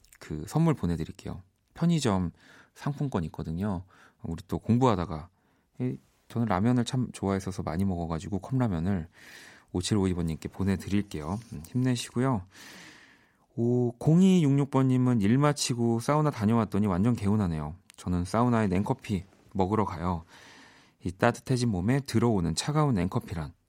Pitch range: 90-120 Hz